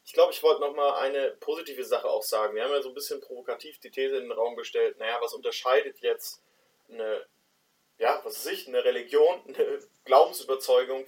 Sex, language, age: male, German, 20-39